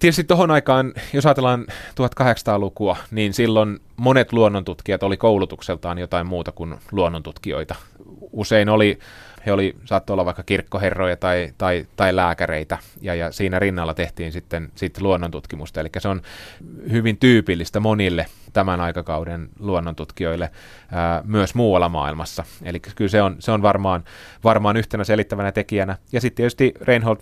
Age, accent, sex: 30-49, native, male